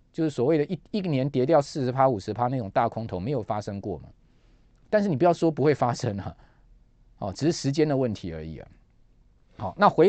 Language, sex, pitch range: Chinese, male, 120-180 Hz